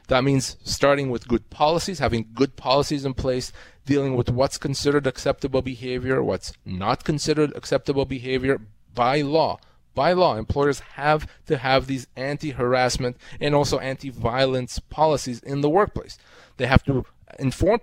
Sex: male